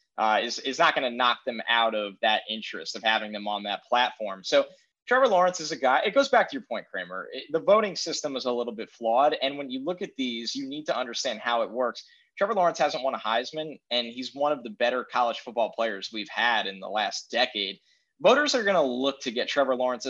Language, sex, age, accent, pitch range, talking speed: English, male, 20-39, American, 115-165 Hz, 245 wpm